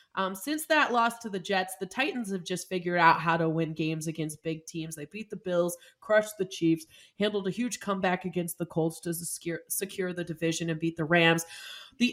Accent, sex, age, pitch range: American, female, 20-39, 180-240 Hz